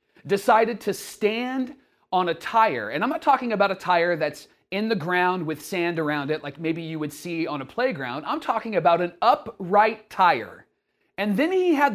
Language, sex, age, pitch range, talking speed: English, male, 30-49, 155-240 Hz, 195 wpm